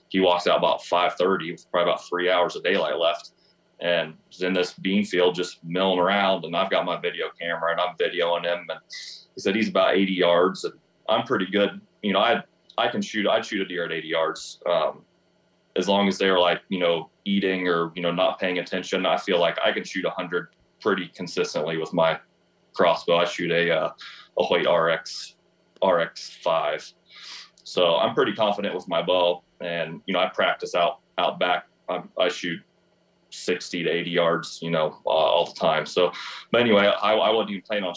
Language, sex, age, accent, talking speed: English, male, 30-49, American, 210 wpm